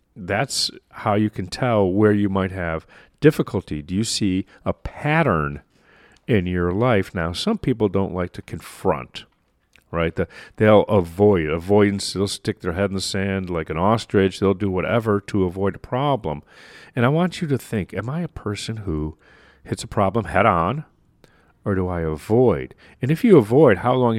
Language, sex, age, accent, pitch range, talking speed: English, male, 40-59, American, 95-115 Hz, 180 wpm